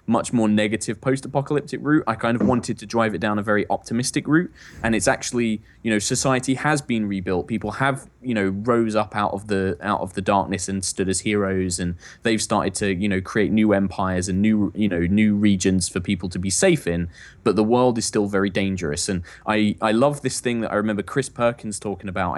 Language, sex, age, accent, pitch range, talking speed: English, male, 20-39, British, 95-115 Hz, 230 wpm